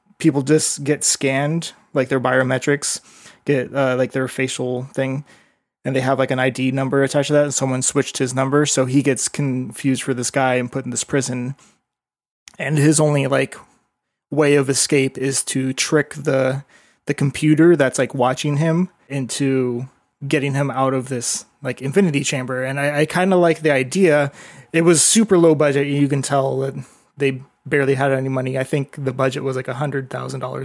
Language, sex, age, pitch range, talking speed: English, male, 20-39, 135-150 Hz, 190 wpm